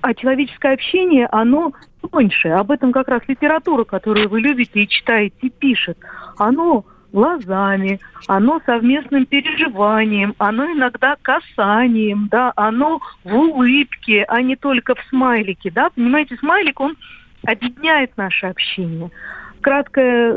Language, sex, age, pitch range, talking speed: Russian, female, 40-59, 215-280 Hz, 125 wpm